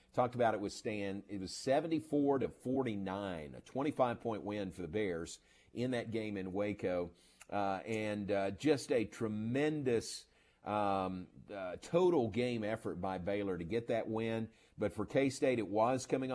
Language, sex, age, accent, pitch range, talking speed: English, male, 50-69, American, 100-120 Hz, 160 wpm